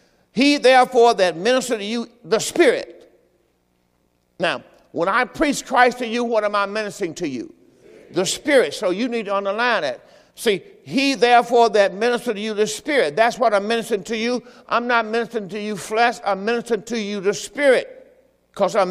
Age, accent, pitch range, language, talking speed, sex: 50-69, American, 175-240 Hz, English, 185 wpm, male